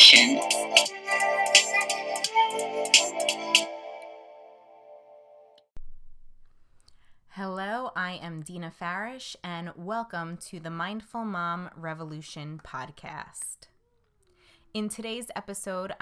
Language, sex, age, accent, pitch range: English, female, 20-39, American, 160-200 Hz